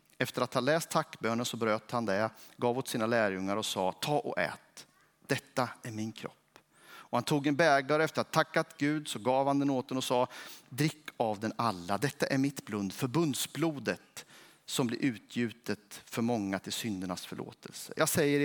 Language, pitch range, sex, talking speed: Swedish, 115-150 Hz, male, 190 wpm